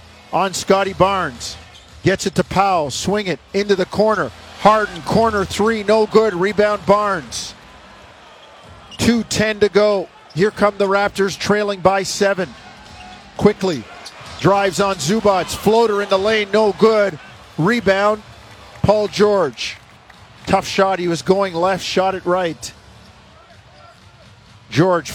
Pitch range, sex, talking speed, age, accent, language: 170-205 Hz, male, 125 wpm, 50-69, American, English